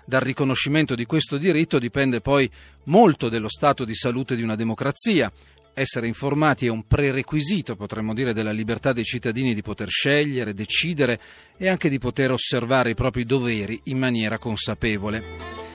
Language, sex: Italian, male